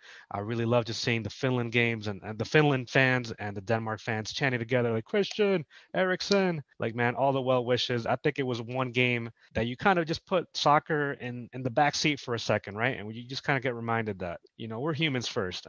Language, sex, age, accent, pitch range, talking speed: English, male, 20-39, American, 110-130 Hz, 235 wpm